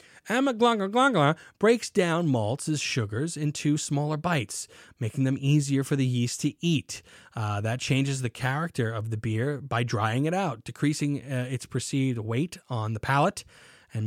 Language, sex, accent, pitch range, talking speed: English, male, American, 120-155 Hz, 155 wpm